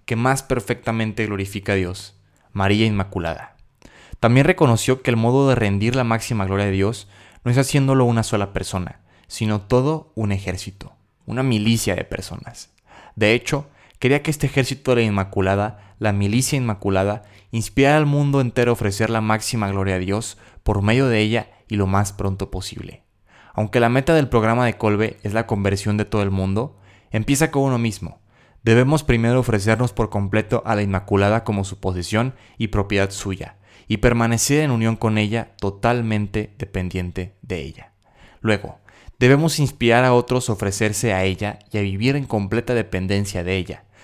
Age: 20-39